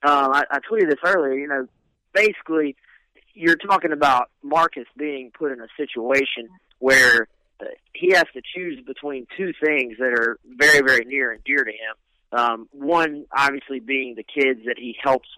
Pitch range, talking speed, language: 120-150 Hz, 175 wpm, English